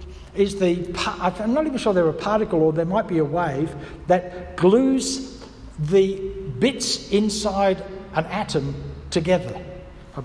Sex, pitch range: male, 165-215 Hz